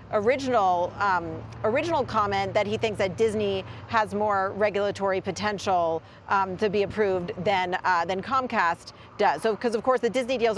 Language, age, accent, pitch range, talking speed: English, 40-59, American, 195-240 Hz, 165 wpm